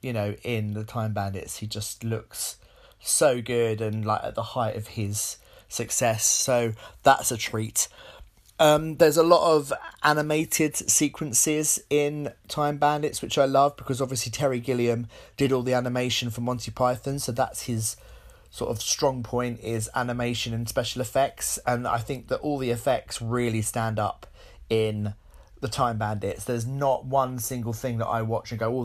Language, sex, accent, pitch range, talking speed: English, male, British, 110-135 Hz, 175 wpm